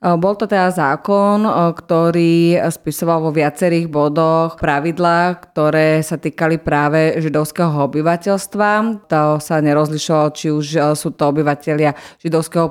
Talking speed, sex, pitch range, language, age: 120 wpm, female, 150-165 Hz, Slovak, 30-49